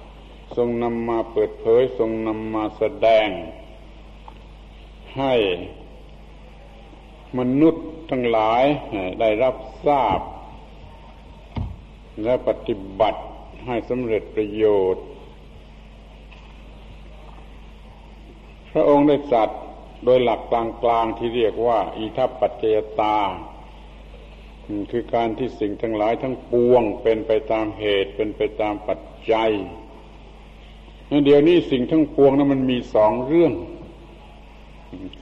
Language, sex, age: Thai, male, 70-89